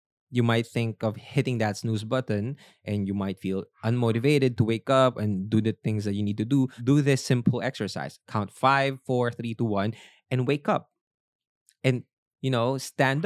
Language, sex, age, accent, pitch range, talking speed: English, male, 20-39, Filipino, 105-135 Hz, 190 wpm